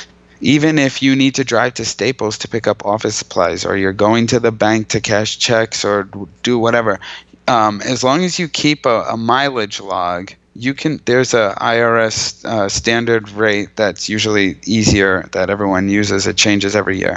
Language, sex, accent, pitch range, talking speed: English, male, American, 100-115 Hz, 185 wpm